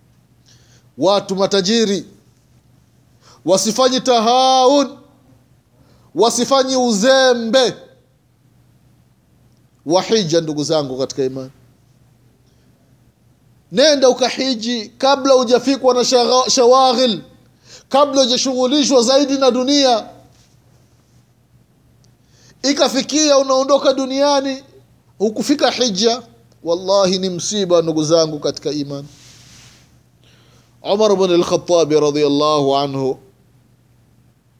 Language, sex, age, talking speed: Swahili, male, 30-49, 65 wpm